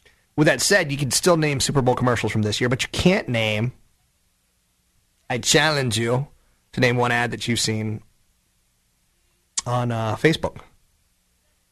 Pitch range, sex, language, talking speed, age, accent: 85-145 Hz, male, English, 155 wpm, 30-49, American